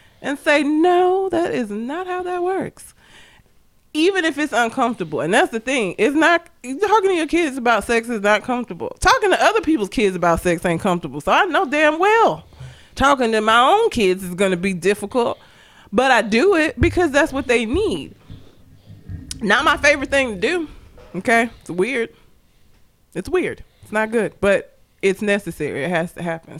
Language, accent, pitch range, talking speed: English, American, 195-310 Hz, 185 wpm